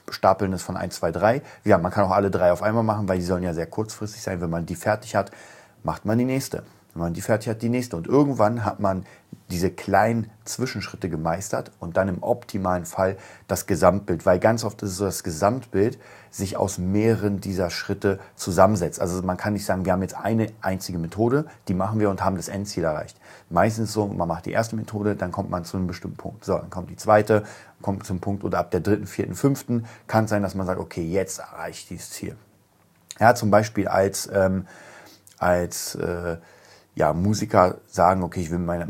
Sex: male